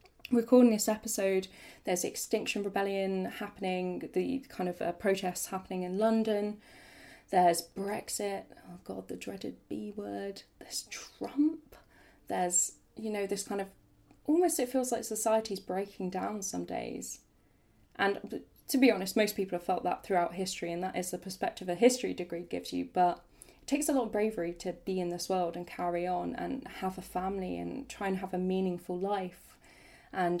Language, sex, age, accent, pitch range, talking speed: English, female, 20-39, British, 175-220 Hz, 175 wpm